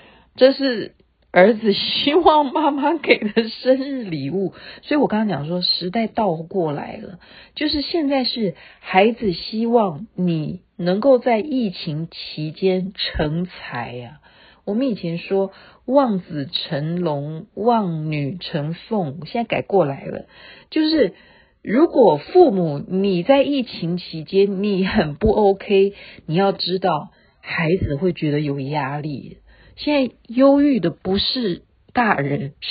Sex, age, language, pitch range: female, 50-69, Chinese, 170-260 Hz